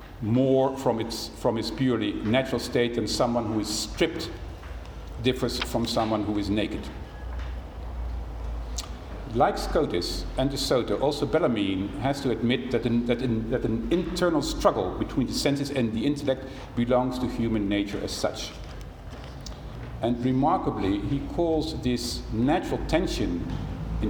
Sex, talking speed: male, 140 wpm